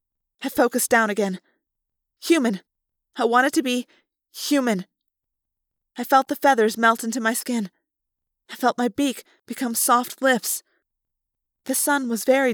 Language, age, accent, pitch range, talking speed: English, 20-39, American, 225-275 Hz, 140 wpm